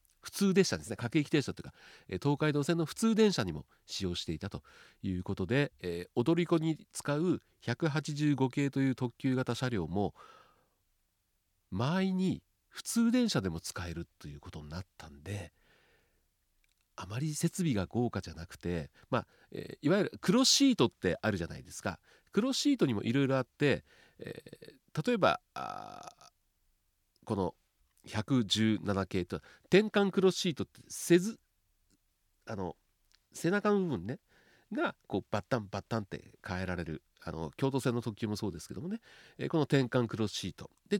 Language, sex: Japanese, male